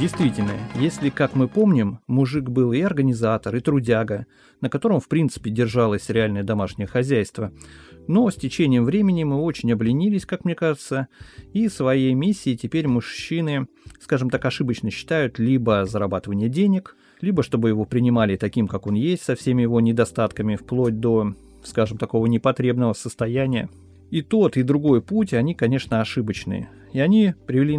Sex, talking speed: male, 150 wpm